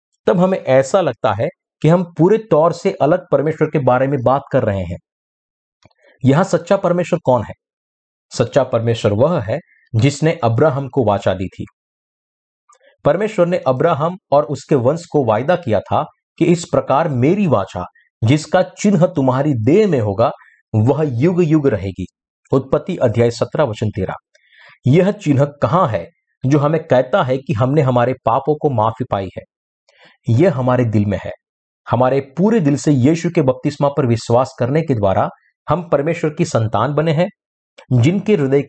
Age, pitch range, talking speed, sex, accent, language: 50-69, 120-165 Hz, 165 wpm, male, native, Hindi